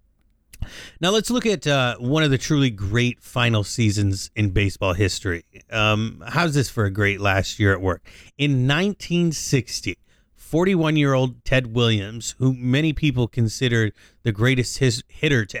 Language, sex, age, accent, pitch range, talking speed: English, male, 30-49, American, 105-145 Hz, 150 wpm